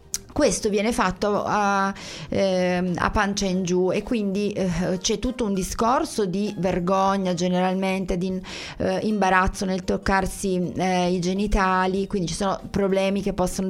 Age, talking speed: 30-49, 145 wpm